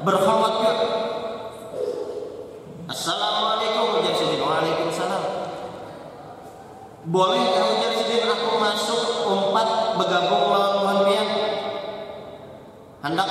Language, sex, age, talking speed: Indonesian, male, 20-39, 45 wpm